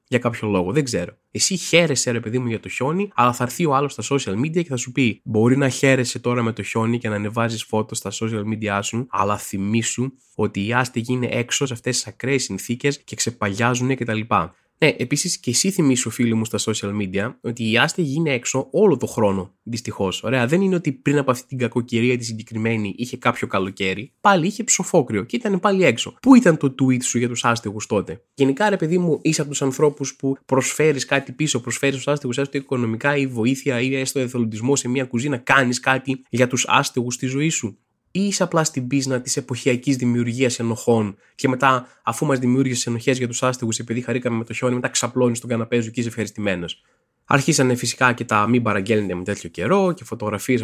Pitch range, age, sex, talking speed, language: 110-135 Hz, 20-39, male, 210 wpm, Greek